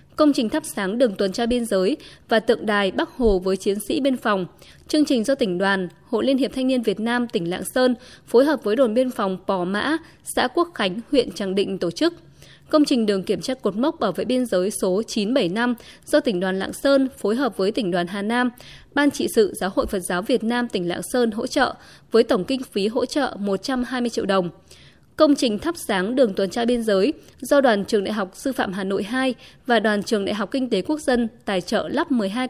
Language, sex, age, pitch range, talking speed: Vietnamese, female, 20-39, 200-260 Hz, 240 wpm